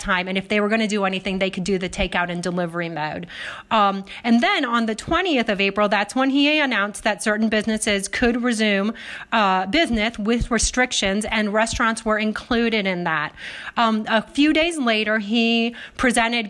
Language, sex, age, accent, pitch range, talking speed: English, female, 30-49, American, 200-245 Hz, 185 wpm